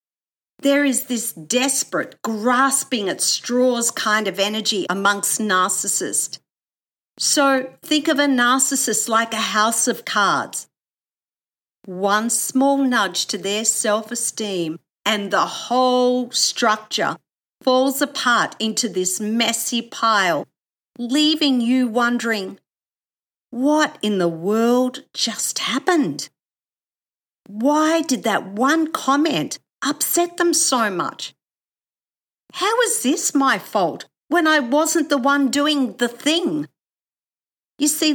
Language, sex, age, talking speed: English, female, 50-69, 115 wpm